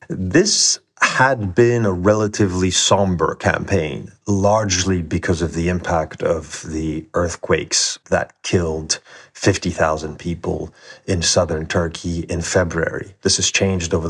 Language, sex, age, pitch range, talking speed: English, male, 30-49, 85-105 Hz, 120 wpm